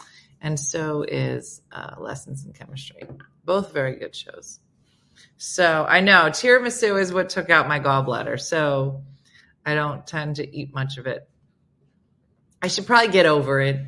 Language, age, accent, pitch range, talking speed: English, 30-49, American, 140-180 Hz, 155 wpm